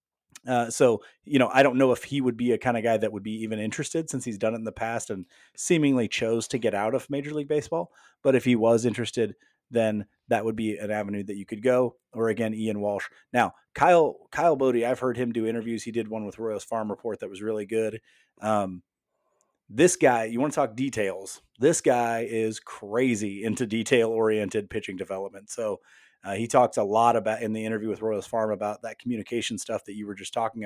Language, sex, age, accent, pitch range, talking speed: English, male, 30-49, American, 105-125 Hz, 225 wpm